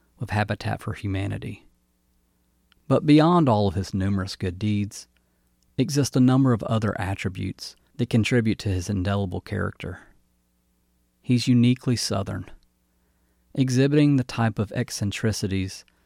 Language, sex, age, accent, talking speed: English, male, 40-59, American, 120 wpm